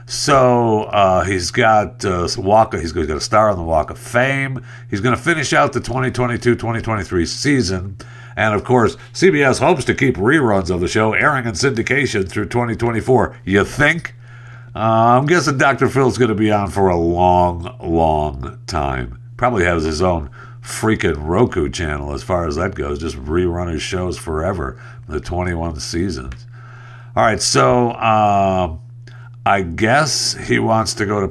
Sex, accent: male, American